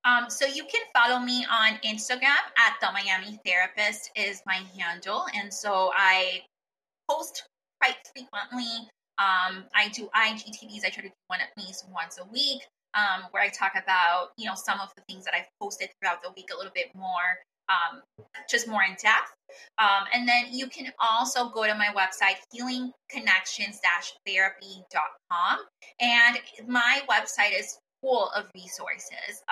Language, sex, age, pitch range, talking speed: English, female, 20-39, 185-240 Hz, 160 wpm